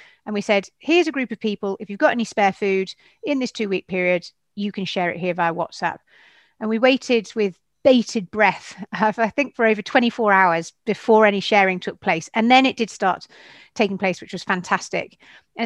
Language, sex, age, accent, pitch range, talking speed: English, female, 40-59, British, 180-230 Hz, 205 wpm